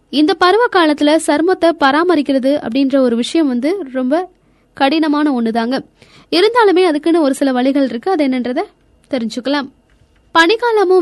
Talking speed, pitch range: 95 wpm, 260-330 Hz